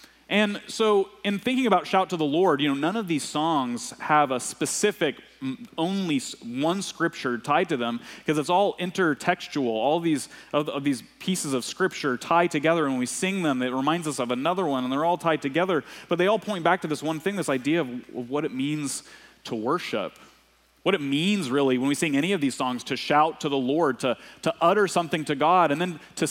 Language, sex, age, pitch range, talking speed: English, male, 30-49, 125-180 Hz, 225 wpm